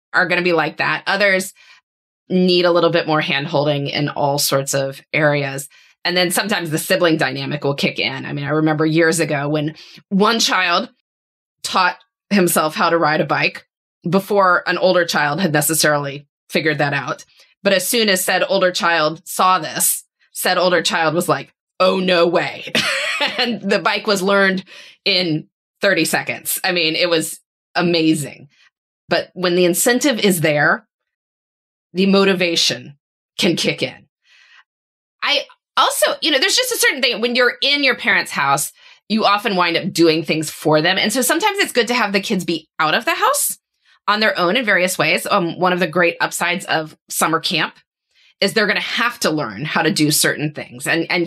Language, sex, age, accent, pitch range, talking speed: English, female, 20-39, American, 155-200 Hz, 185 wpm